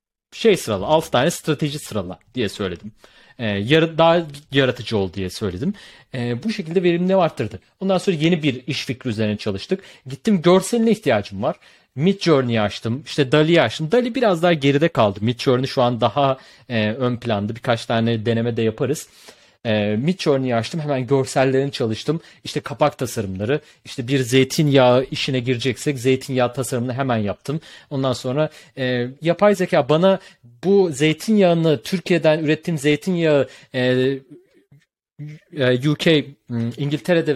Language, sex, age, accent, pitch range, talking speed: Turkish, male, 40-59, native, 125-165 Hz, 140 wpm